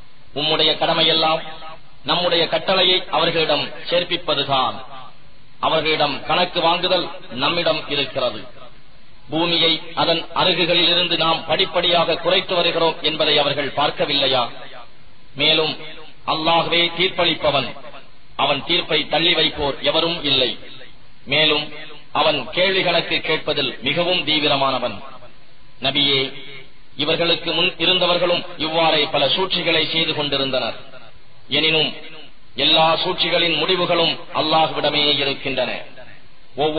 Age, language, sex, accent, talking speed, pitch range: 30-49, English, male, Indian, 65 wpm, 140-170 Hz